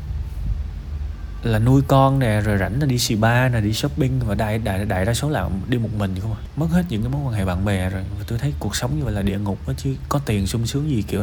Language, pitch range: Vietnamese, 80-125 Hz